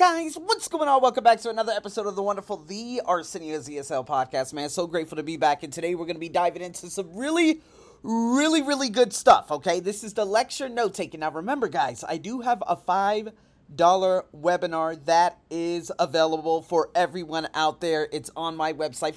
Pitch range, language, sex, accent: 155-220 Hz, English, male, American